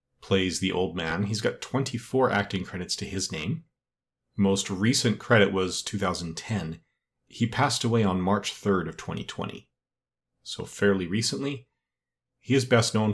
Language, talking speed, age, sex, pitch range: English, 145 wpm, 30-49, male, 90-115 Hz